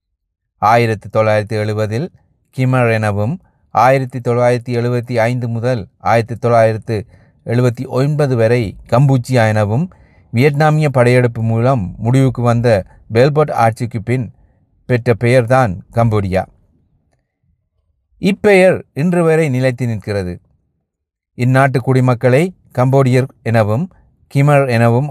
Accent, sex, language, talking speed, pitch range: native, male, Tamil, 90 wpm, 100-130 Hz